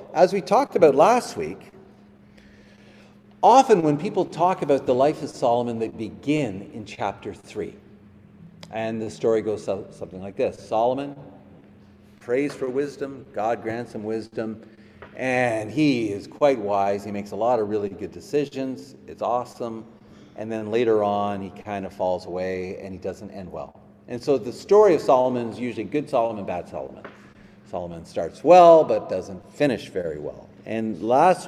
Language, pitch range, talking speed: English, 100-140 Hz, 165 wpm